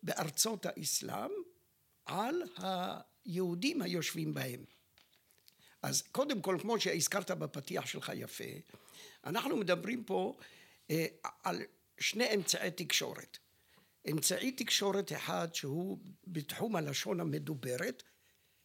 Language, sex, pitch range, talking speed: Hebrew, male, 160-200 Hz, 95 wpm